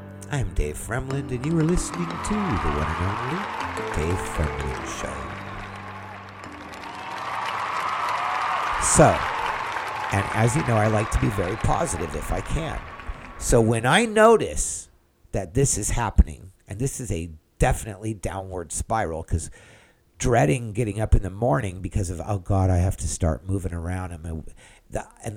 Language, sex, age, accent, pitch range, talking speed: English, male, 50-69, American, 85-115 Hz, 145 wpm